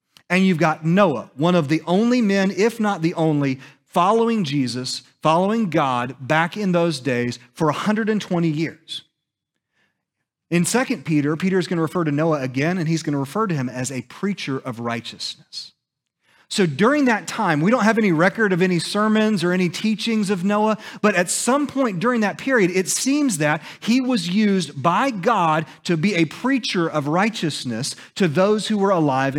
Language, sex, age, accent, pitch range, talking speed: English, male, 30-49, American, 155-215 Hz, 185 wpm